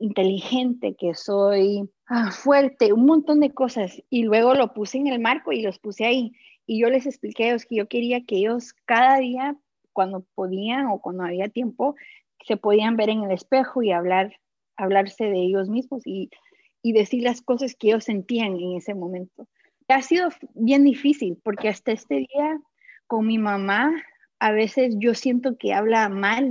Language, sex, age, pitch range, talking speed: Spanish, female, 30-49, 200-255 Hz, 185 wpm